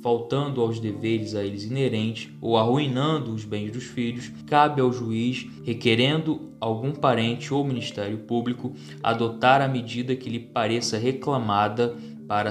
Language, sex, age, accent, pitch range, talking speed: Portuguese, male, 20-39, Brazilian, 110-130 Hz, 140 wpm